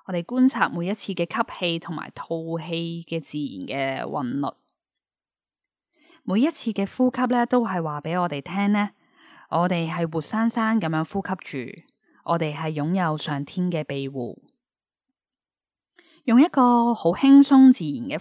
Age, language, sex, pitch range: 10-29, Chinese, female, 160-245 Hz